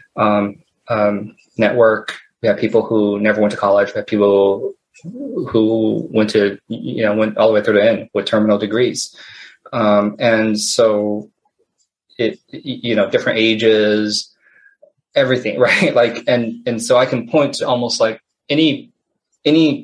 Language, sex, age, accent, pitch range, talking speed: English, male, 20-39, American, 105-125 Hz, 155 wpm